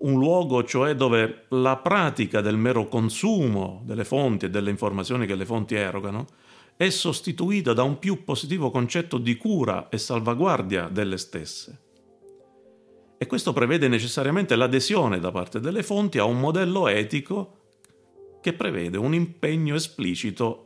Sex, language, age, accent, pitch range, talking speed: male, Italian, 40-59, native, 105-165 Hz, 140 wpm